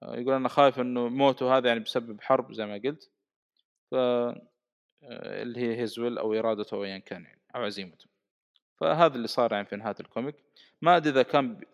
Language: Arabic